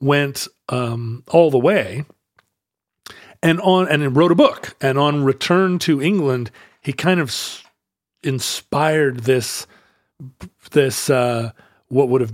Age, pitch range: 40-59, 120-155 Hz